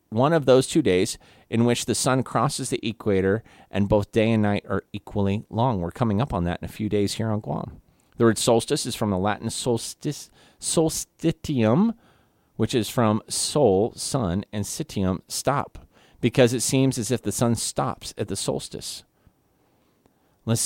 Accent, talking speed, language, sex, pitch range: American, 175 wpm, English, male, 105-145 Hz